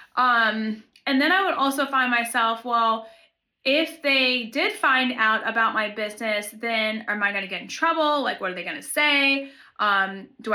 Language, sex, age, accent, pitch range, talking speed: English, female, 30-49, American, 225-300 Hz, 195 wpm